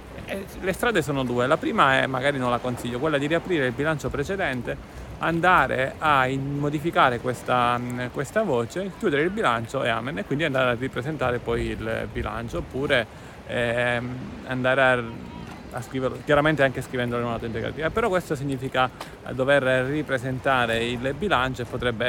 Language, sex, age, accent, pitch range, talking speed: Italian, male, 30-49, native, 120-145 Hz, 150 wpm